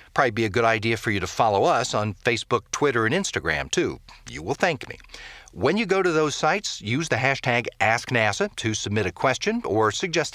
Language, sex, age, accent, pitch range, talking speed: English, male, 50-69, American, 110-155 Hz, 210 wpm